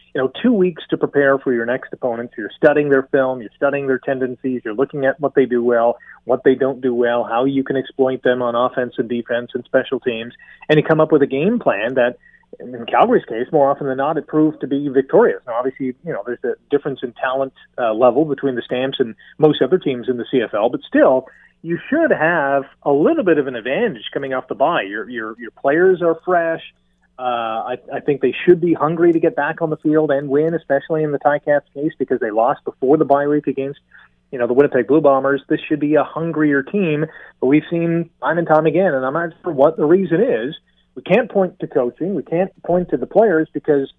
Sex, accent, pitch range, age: male, American, 130-160 Hz, 40-59